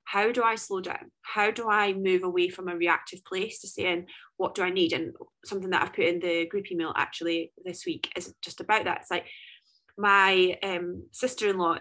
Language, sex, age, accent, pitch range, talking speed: English, female, 20-39, British, 180-230 Hz, 210 wpm